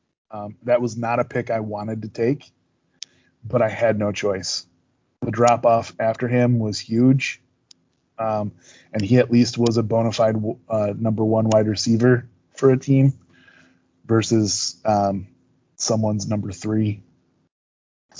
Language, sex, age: English, male, 20-39